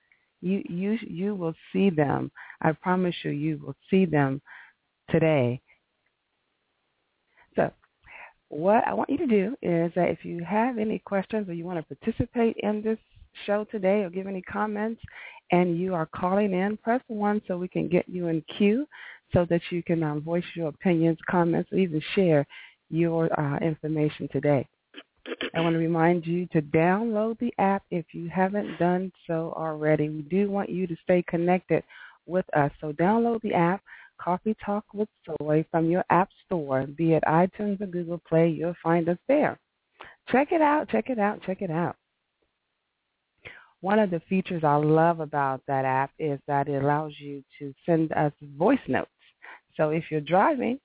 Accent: American